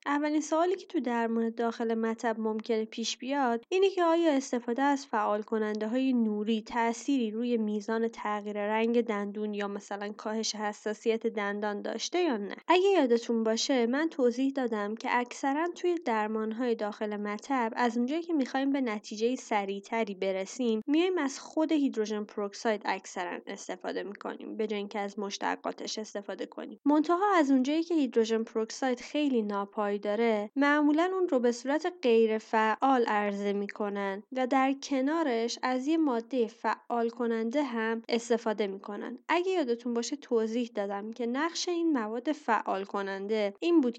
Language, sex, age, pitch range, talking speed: Persian, female, 20-39, 215-270 Hz, 145 wpm